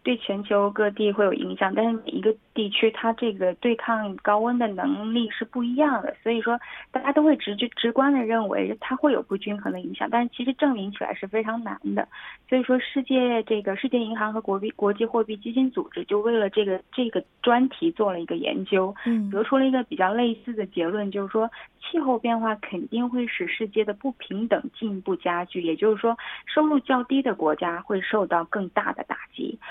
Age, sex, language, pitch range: 20-39, female, Korean, 195-255 Hz